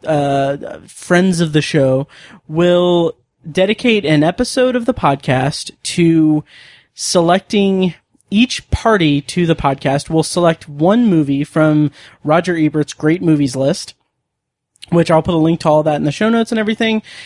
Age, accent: 30-49, American